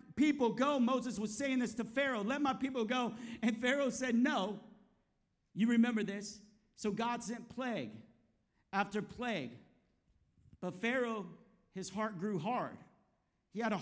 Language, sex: English, male